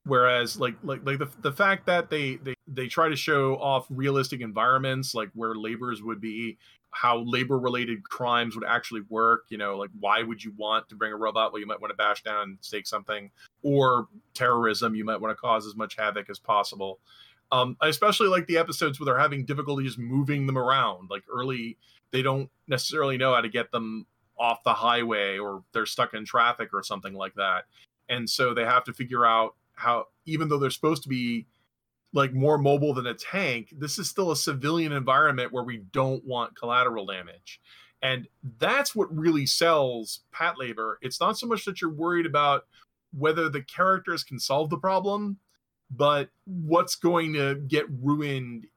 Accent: American